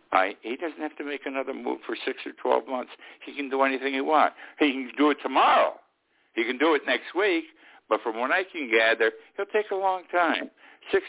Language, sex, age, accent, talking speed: English, male, 60-79, American, 220 wpm